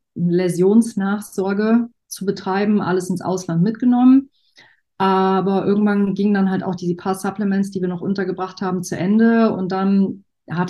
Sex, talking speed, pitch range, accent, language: female, 145 wpm, 180-220 Hz, German, German